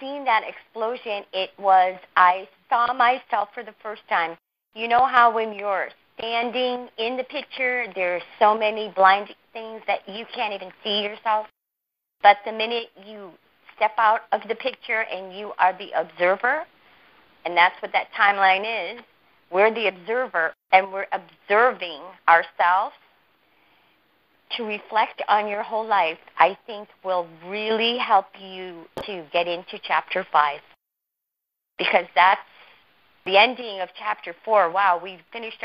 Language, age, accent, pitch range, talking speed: English, 40-59, American, 190-225 Hz, 145 wpm